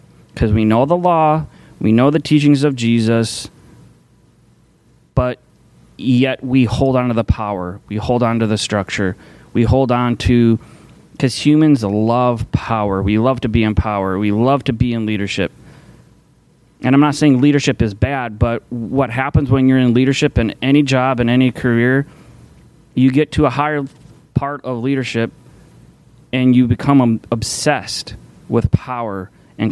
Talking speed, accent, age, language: 160 wpm, American, 30-49, English